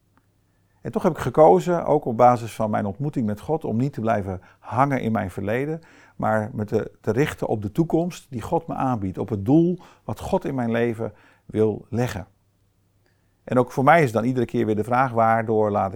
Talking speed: 205 wpm